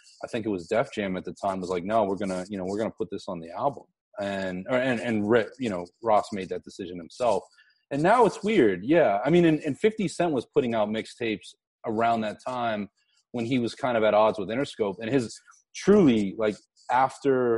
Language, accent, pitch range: English, American, 95-130 Hz